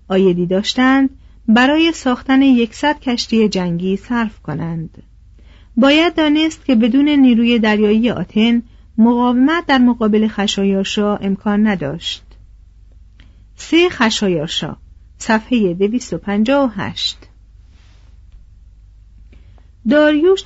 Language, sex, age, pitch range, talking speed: Persian, female, 40-59, 190-260 Hz, 80 wpm